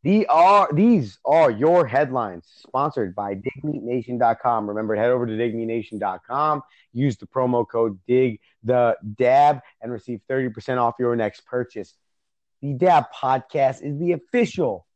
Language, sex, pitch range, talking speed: English, male, 120-155 Hz, 120 wpm